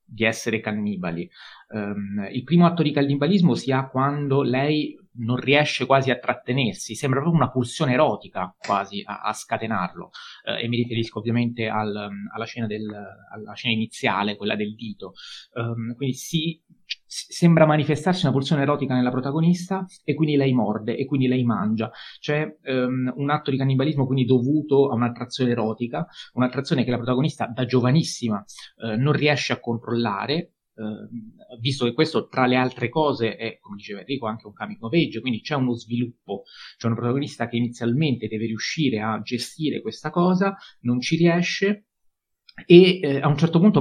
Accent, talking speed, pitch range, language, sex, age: native, 170 wpm, 115-150 Hz, Italian, male, 30-49